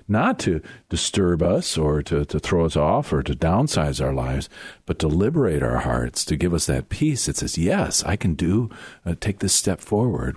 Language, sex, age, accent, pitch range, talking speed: English, male, 50-69, American, 75-100 Hz, 210 wpm